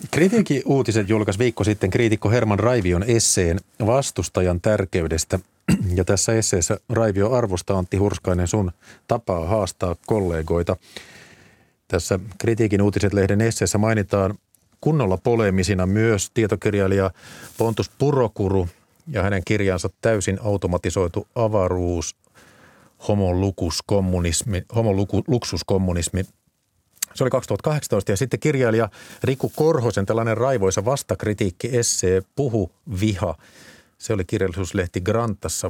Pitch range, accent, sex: 90-115 Hz, native, male